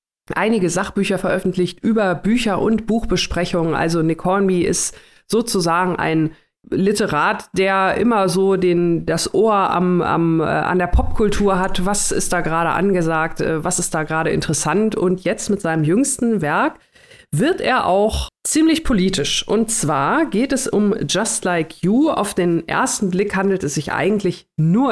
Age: 40-59